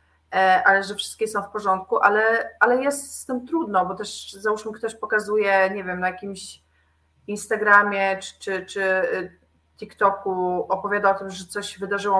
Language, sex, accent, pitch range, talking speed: Polish, female, native, 185-215 Hz, 155 wpm